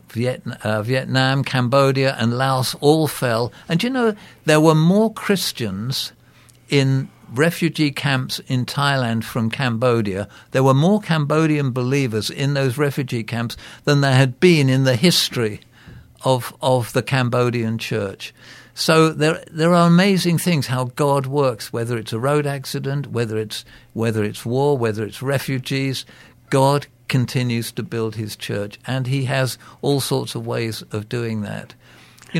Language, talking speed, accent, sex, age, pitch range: English, 150 wpm, British, male, 60-79, 115-145 Hz